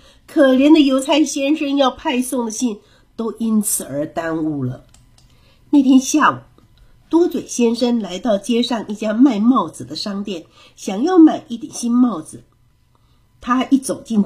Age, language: 50-69, Chinese